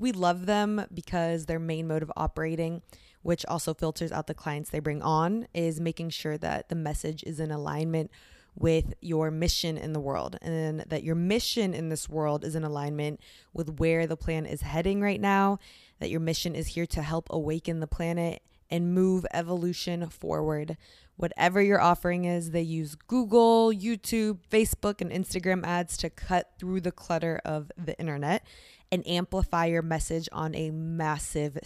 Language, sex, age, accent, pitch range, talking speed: English, female, 20-39, American, 160-185 Hz, 175 wpm